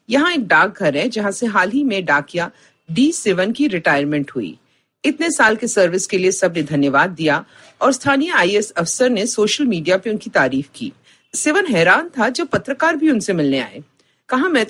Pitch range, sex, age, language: 185-280 Hz, female, 50-69, Hindi